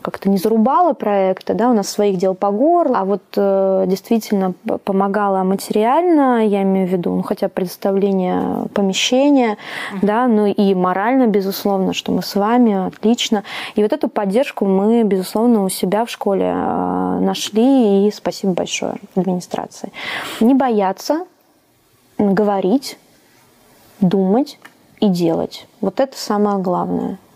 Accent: native